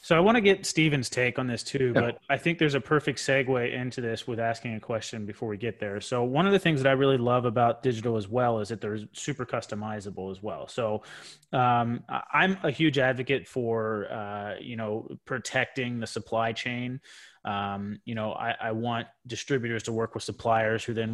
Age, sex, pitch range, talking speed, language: 30-49, male, 105-125 Hz, 210 wpm, English